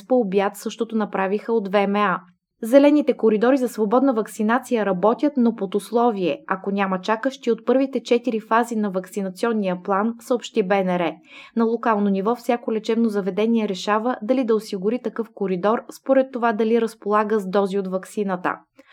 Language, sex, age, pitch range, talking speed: Bulgarian, female, 20-39, 200-245 Hz, 150 wpm